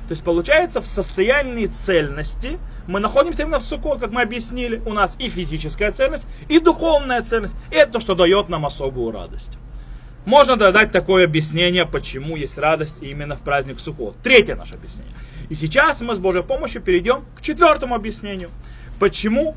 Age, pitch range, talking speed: 30-49, 170-255 Hz, 170 wpm